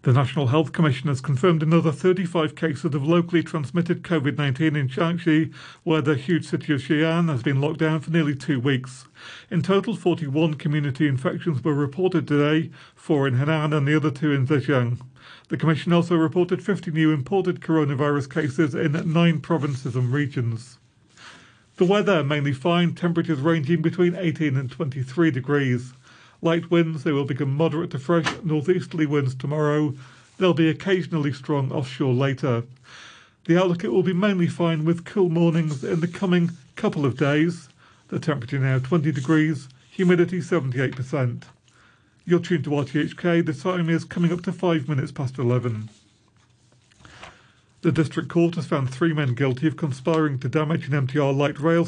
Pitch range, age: 140-170 Hz, 40-59